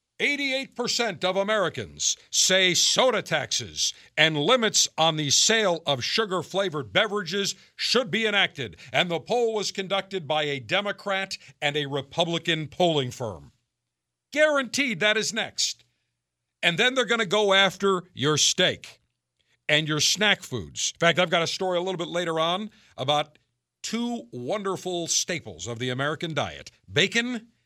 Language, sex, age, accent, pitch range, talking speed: English, male, 50-69, American, 130-195 Hz, 145 wpm